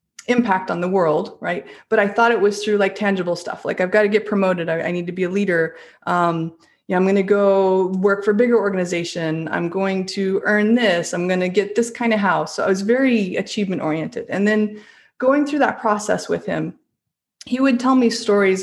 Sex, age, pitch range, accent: female, 30-49, 185-225 Hz, American